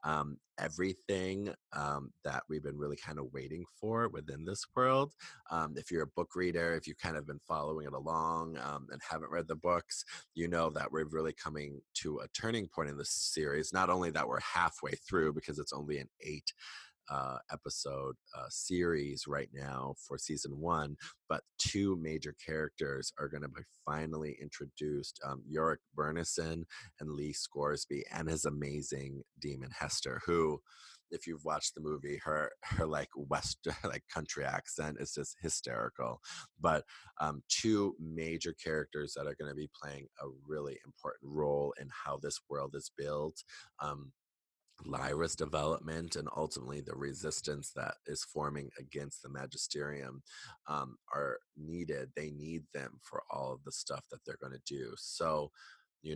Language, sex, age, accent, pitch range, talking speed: English, male, 30-49, American, 70-80 Hz, 165 wpm